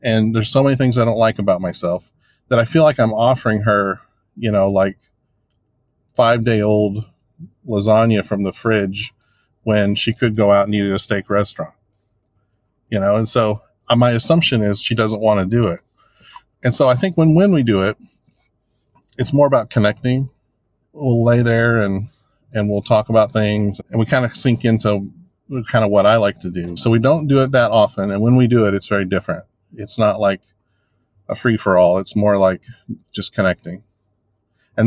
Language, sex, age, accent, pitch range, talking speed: English, male, 40-59, American, 100-120 Hz, 195 wpm